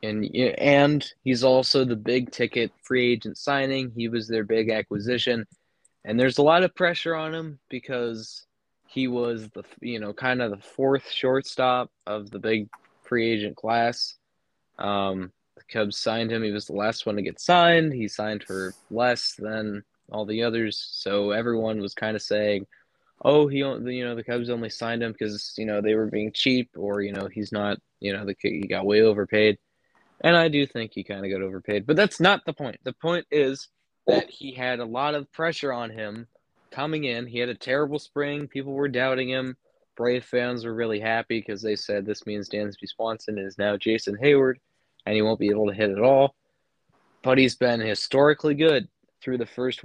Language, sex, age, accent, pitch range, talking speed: English, male, 20-39, American, 105-130 Hz, 195 wpm